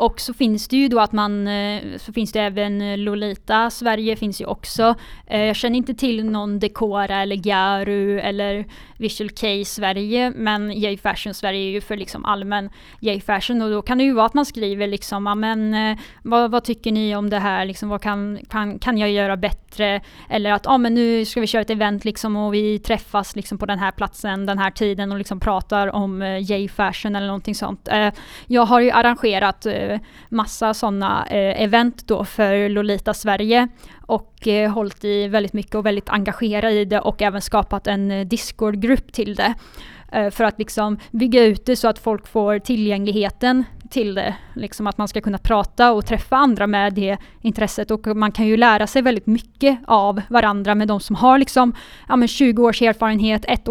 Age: 10-29